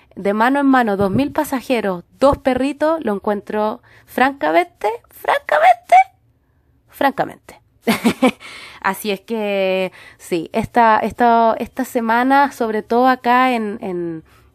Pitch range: 190-240 Hz